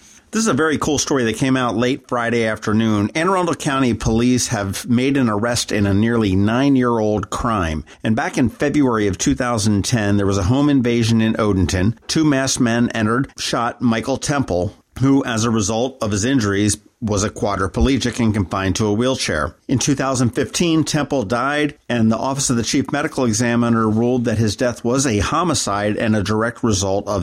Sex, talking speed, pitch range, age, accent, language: male, 185 wpm, 105-135 Hz, 50-69, American, English